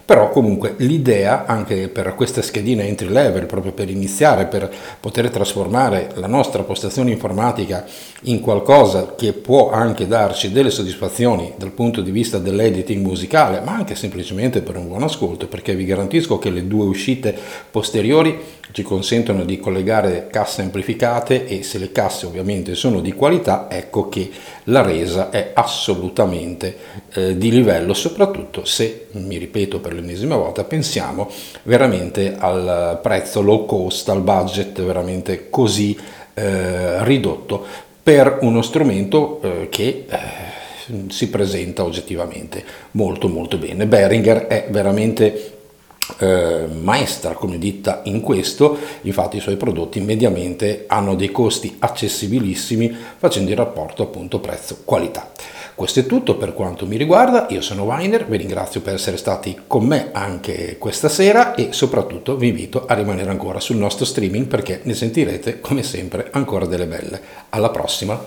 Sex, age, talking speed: male, 50-69, 145 wpm